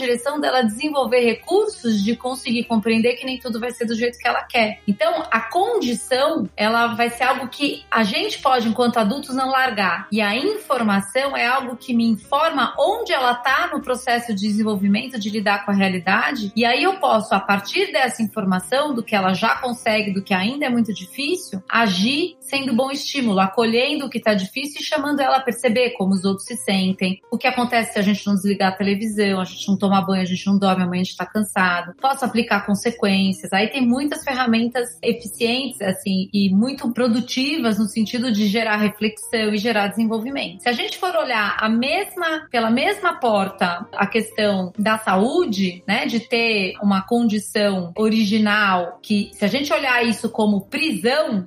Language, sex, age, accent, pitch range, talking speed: Portuguese, female, 30-49, Brazilian, 205-255 Hz, 190 wpm